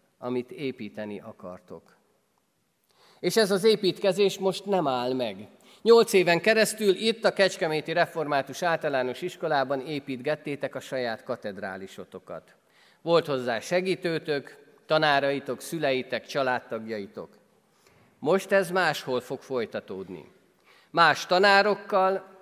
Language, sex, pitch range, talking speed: Hungarian, male, 135-195 Hz, 100 wpm